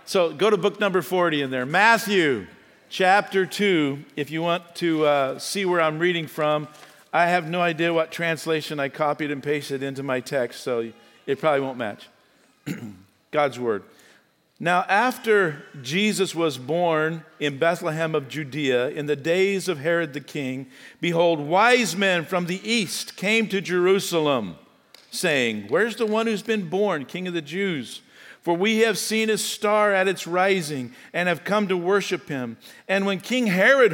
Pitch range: 155-205 Hz